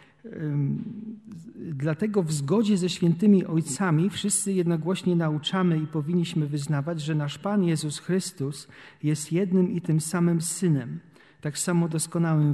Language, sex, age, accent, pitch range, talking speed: Polish, male, 40-59, native, 155-180 Hz, 125 wpm